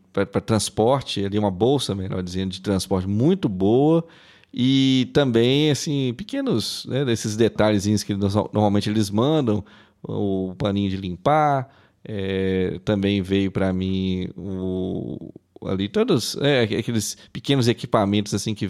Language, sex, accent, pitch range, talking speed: Portuguese, male, Brazilian, 100-125 Hz, 130 wpm